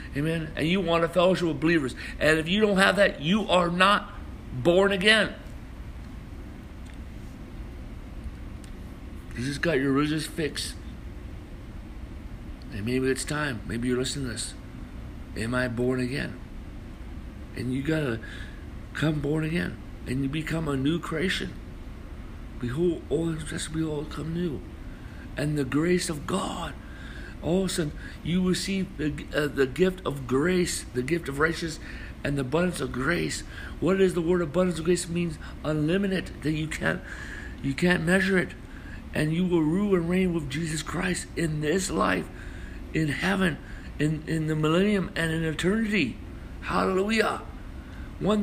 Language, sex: English, male